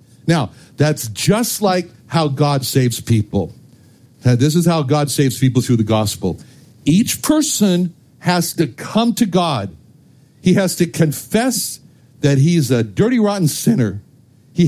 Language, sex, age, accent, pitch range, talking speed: English, male, 60-79, American, 130-180 Hz, 145 wpm